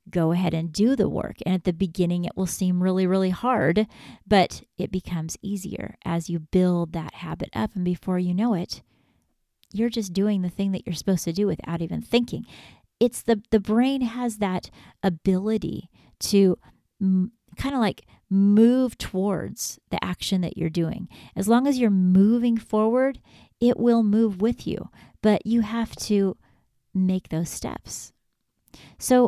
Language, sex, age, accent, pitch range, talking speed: English, female, 30-49, American, 180-220 Hz, 165 wpm